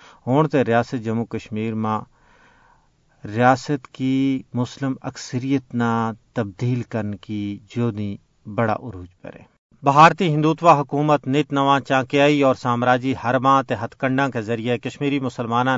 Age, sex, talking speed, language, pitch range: 50-69, male, 120 wpm, Urdu, 115-140 Hz